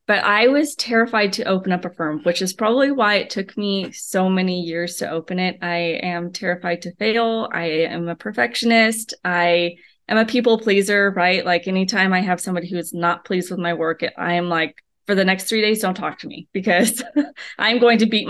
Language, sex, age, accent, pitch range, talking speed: English, female, 20-39, American, 175-220 Hz, 215 wpm